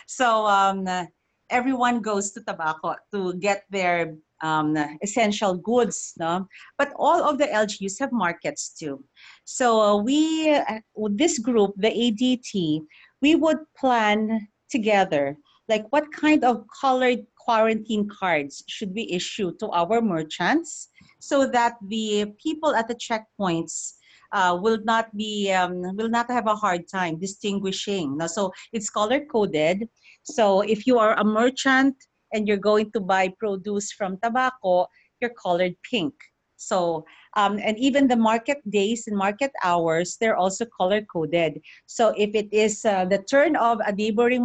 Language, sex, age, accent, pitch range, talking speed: English, female, 40-59, Filipino, 185-240 Hz, 150 wpm